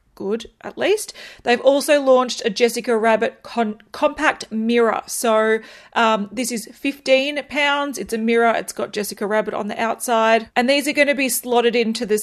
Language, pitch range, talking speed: English, 220-255 Hz, 180 wpm